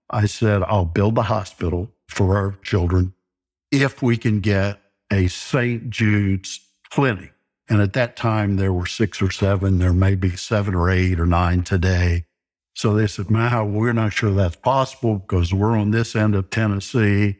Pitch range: 95-115 Hz